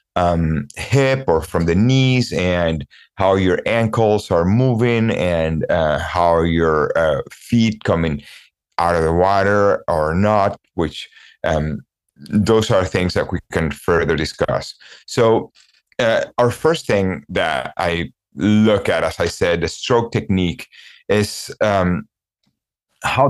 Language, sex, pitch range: English, male, 85-105 Hz